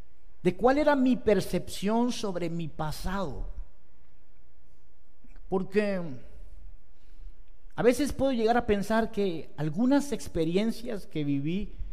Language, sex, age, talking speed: Spanish, male, 50-69, 100 wpm